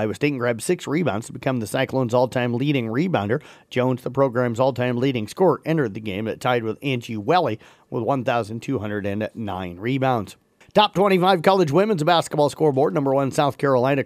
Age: 40-59